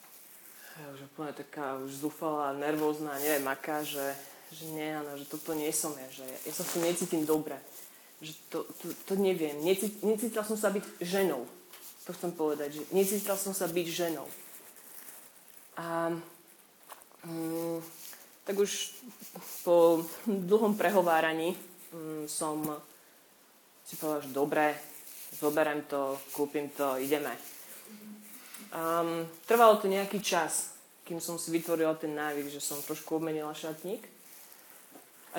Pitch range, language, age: 155-200 Hz, Slovak, 30-49